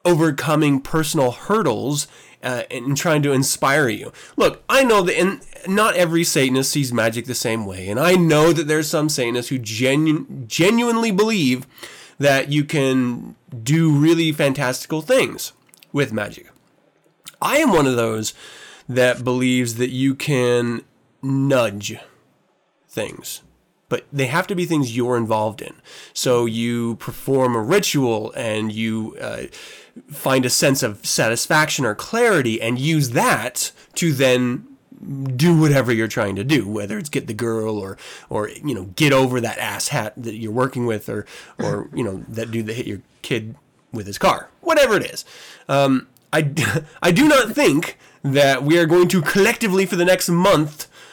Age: 20-39